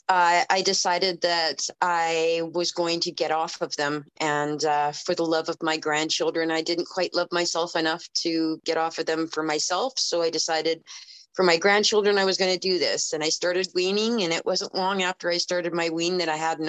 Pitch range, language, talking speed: 160-185 Hz, English, 220 wpm